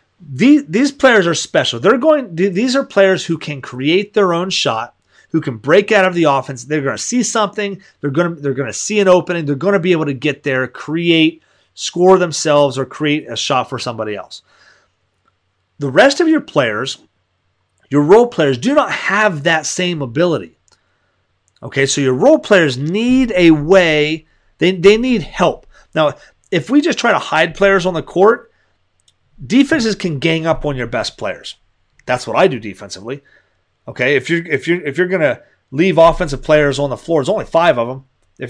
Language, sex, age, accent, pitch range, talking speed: English, male, 30-49, American, 135-185 Hz, 190 wpm